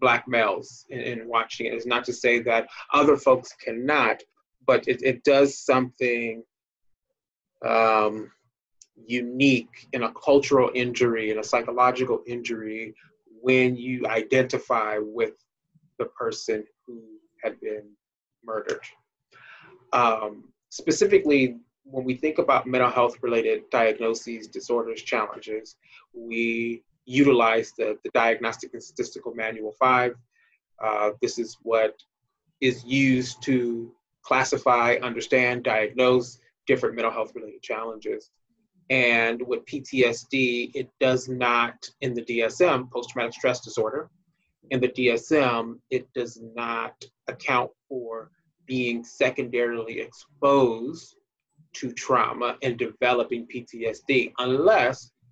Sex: male